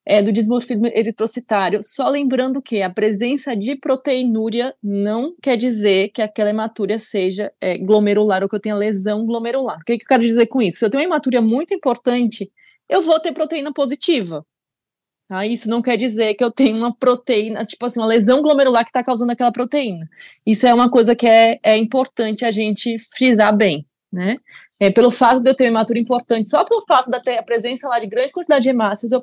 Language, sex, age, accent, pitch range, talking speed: Portuguese, female, 20-39, Brazilian, 215-260 Hz, 210 wpm